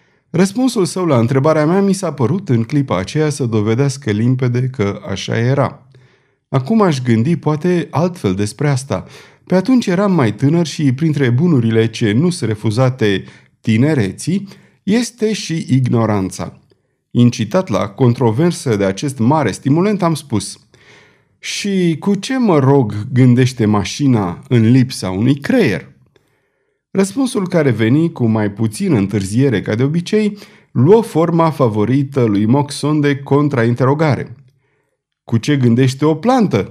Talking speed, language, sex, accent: 135 wpm, Romanian, male, native